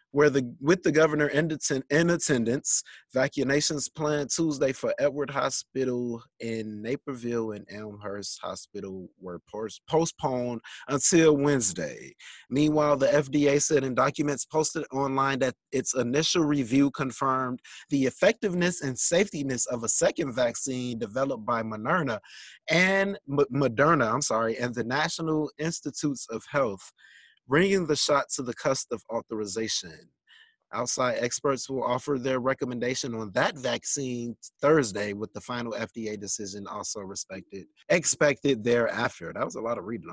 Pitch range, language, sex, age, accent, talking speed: 125-160 Hz, English, male, 30-49, American, 140 wpm